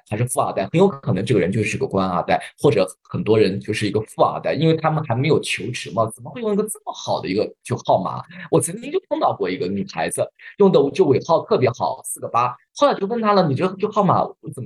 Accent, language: native, Chinese